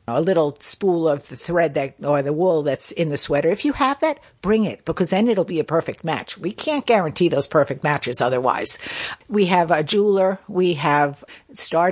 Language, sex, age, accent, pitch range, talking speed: English, female, 60-79, American, 155-205 Hz, 205 wpm